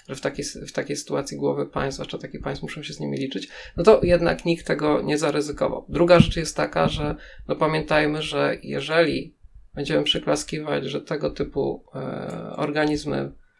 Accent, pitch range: native, 135-180 Hz